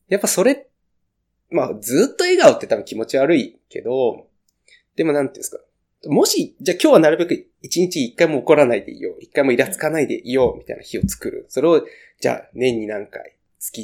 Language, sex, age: Japanese, male, 20-39